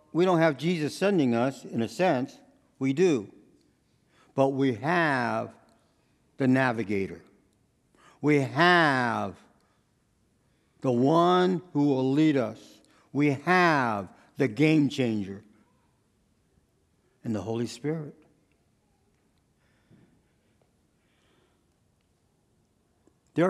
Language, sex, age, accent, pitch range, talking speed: English, male, 60-79, American, 105-150 Hz, 85 wpm